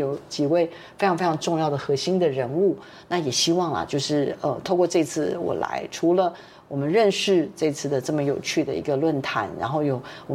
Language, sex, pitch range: Chinese, female, 155-200 Hz